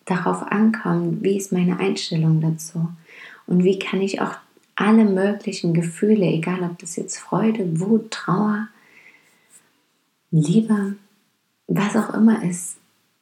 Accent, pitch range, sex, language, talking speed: German, 165-205 Hz, female, German, 125 wpm